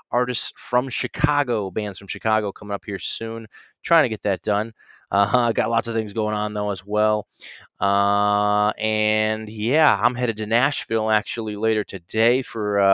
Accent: American